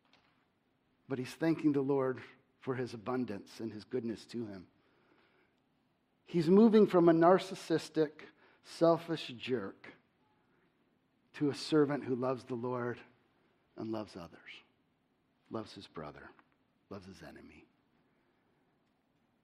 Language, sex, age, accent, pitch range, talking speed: English, male, 50-69, American, 130-180 Hz, 110 wpm